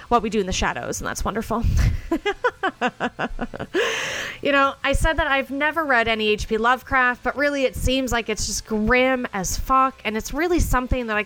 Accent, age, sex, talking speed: American, 30-49, female, 190 wpm